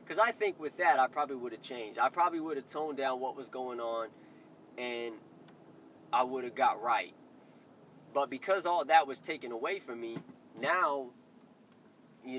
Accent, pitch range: American, 130-190 Hz